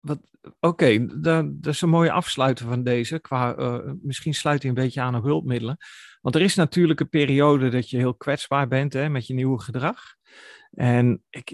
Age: 40-59